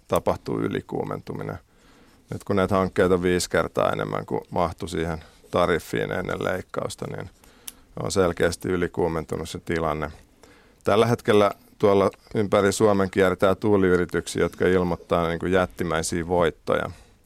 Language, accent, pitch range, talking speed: Finnish, native, 90-100 Hz, 120 wpm